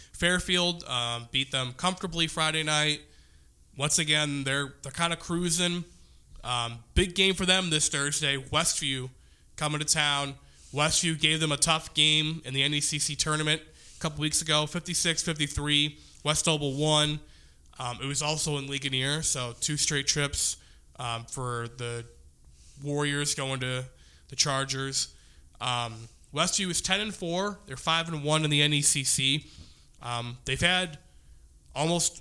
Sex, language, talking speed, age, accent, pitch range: male, English, 150 wpm, 20-39, American, 120-150 Hz